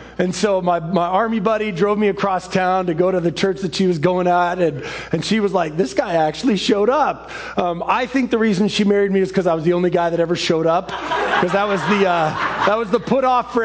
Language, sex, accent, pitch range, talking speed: English, male, American, 180-225 Hz, 255 wpm